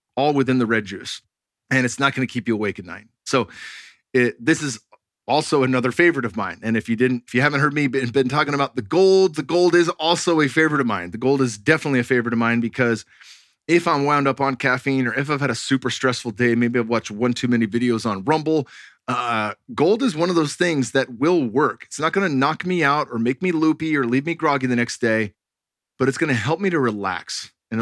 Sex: male